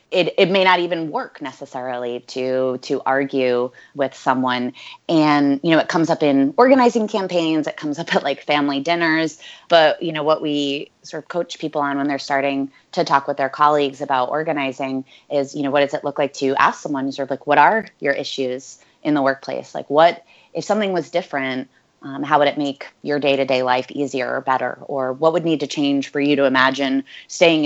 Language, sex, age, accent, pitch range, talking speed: English, female, 20-39, American, 135-165 Hz, 210 wpm